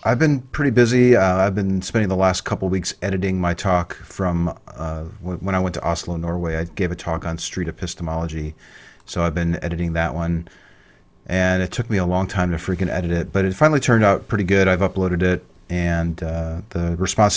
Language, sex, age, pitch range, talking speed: English, male, 40-59, 85-100 Hz, 210 wpm